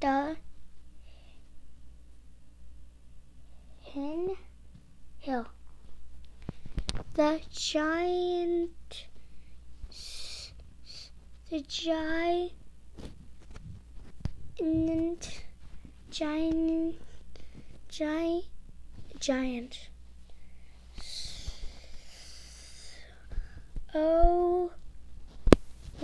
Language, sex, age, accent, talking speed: English, female, 10-29, American, 40 wpm